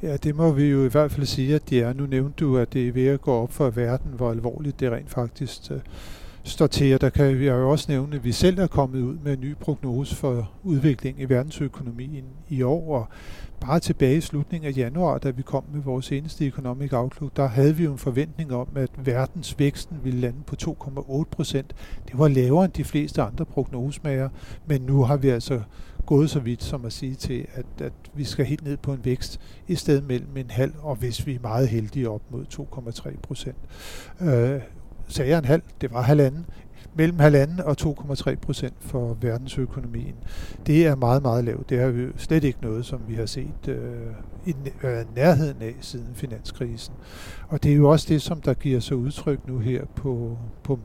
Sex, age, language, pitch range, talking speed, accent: male, 50-69, Danish, 125-145 Hz, 210 wpm, native